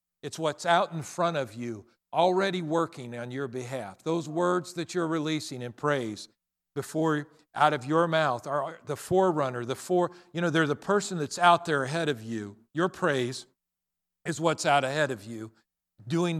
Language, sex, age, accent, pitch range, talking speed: English, male, 50-69, American, 130-180 Hz, 180 wpm